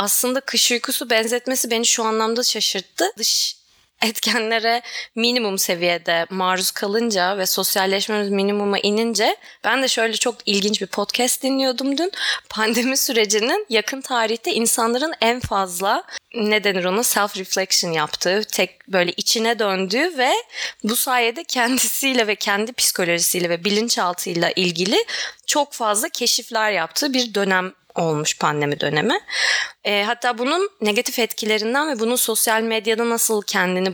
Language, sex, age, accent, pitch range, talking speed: Turkish, female, 20-39, native, 190-235 Hz, 130 wpm